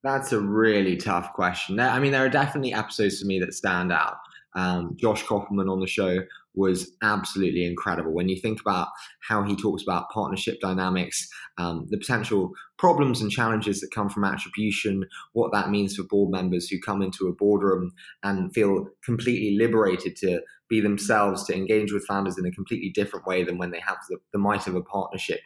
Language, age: English, 20-39